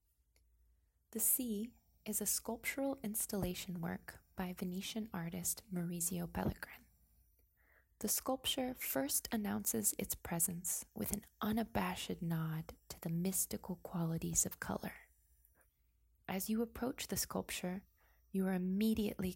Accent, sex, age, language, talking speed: American, female, 20-39, English, 110 wpm